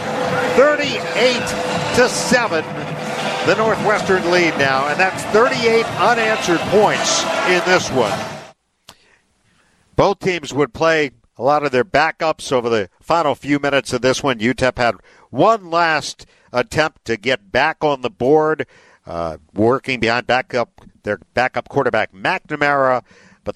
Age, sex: 50-69, male